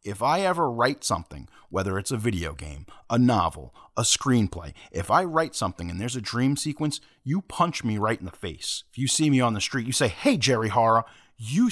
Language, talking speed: English, 220 wpm